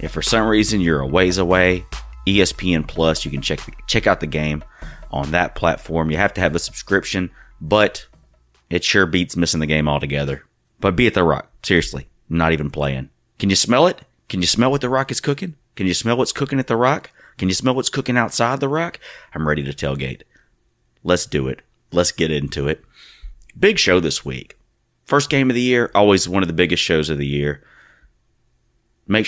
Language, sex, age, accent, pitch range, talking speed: English, male, 30-49, American, 75-100 Hz, 205 wpm